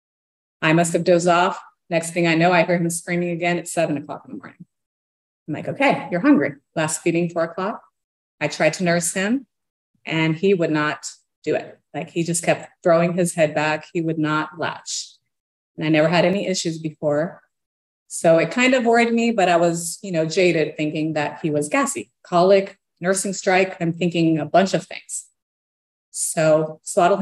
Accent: American